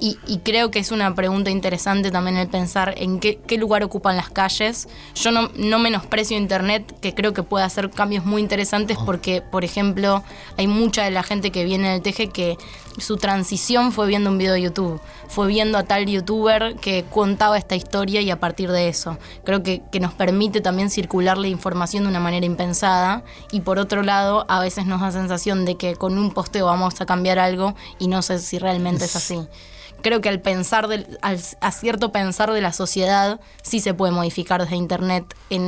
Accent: Argentinian